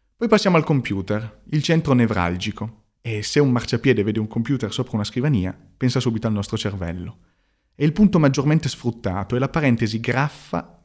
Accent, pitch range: native, 100-125 Hz